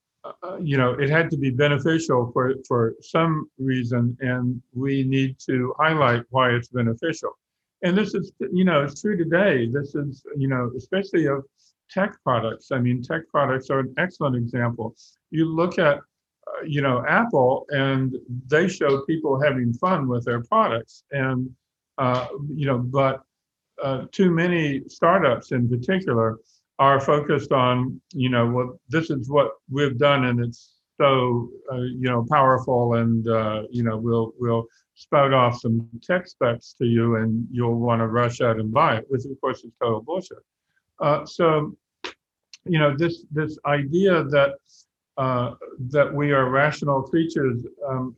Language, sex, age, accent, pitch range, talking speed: English, male, 50-69, American, 125-150 Hz, 165 wpm